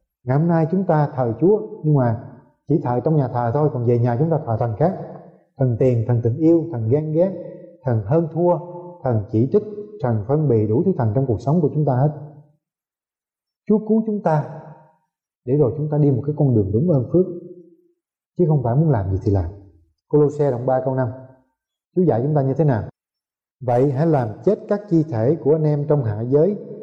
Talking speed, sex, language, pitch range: 225 wpm, male, Vietnamese, 130-185 Hz